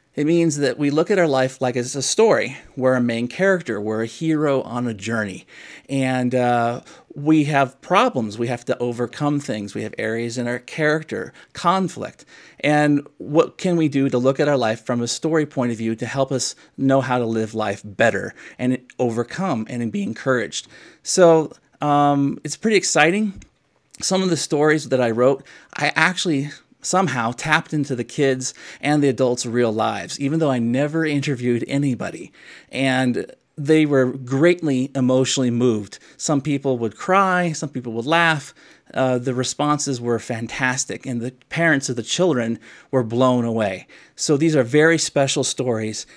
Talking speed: 175 wpm